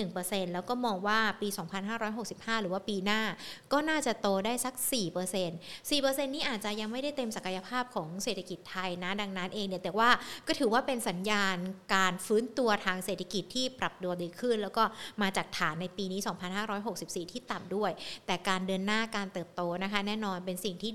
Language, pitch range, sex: Thai, 190-240 Hz, female